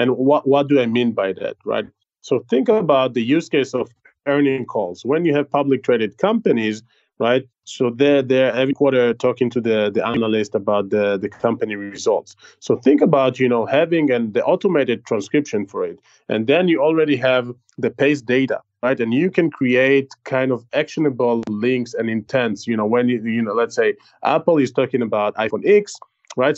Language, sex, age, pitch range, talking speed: English, male, 30-49, 115-145 Hz, 195 wpm